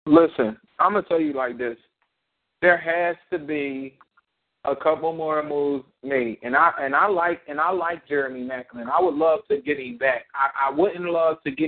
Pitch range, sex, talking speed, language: 140-175 Hz, male, 200 wpm, English